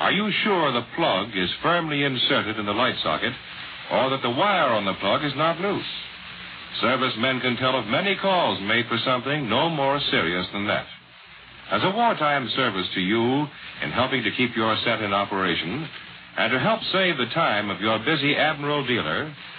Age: 60-79